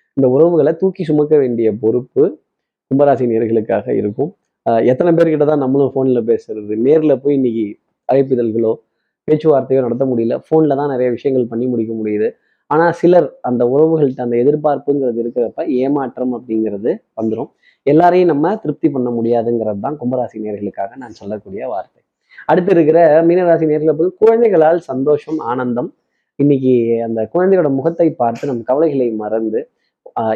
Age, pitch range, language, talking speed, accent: 20-39, 120-160 Hz, Tamil, 130 wpm, native